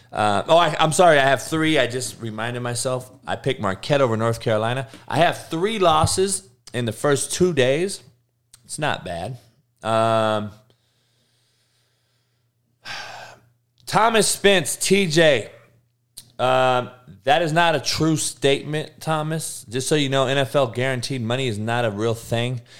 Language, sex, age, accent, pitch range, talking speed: English, male, 20-39, American, 110-130 Hz, 140 wpm